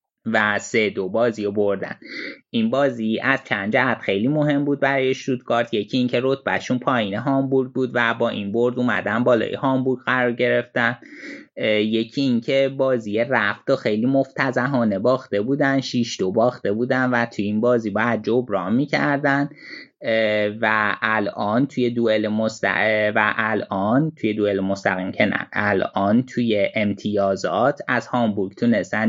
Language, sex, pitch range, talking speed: Persian, male, 105-130 Hz, 140 wpm